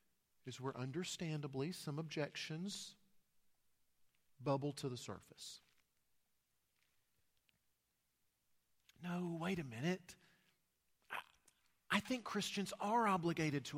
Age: 40-59